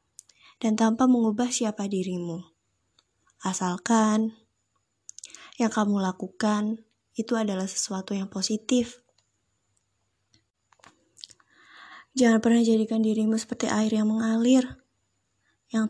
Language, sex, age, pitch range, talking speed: Indonesian, female, 20-39, 195-230 Hz, 85 wpm